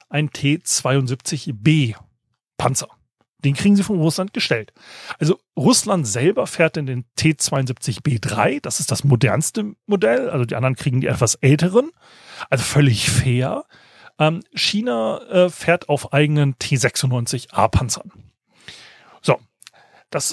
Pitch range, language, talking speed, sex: 125-165 Hz, German, 110 wpm, male